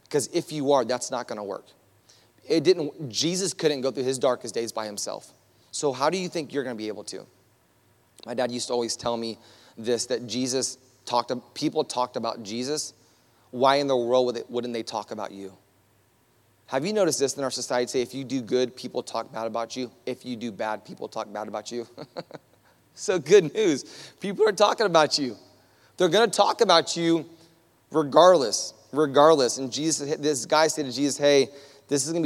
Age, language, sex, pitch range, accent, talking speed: 30-49, English, male, 120-145 Hz, American, 200 wpm